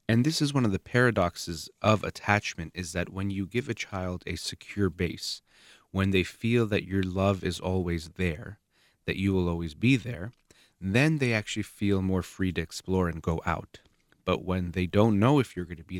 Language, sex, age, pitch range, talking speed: English, male, 30-49, 85-100 Hz, 205 wpm